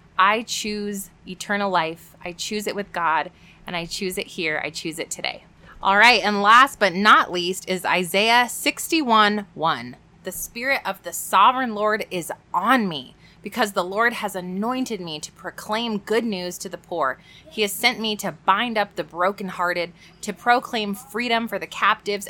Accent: American